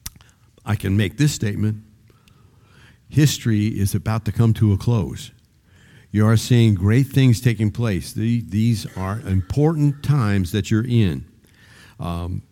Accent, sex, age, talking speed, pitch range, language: American, male, 50-69, 135 wpm, 95-115 Hz, English